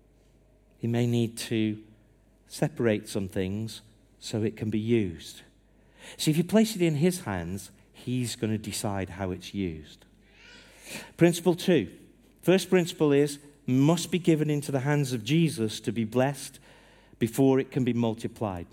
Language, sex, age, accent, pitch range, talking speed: English, male, 50-69, British, 105-145 Hz, 155 wpm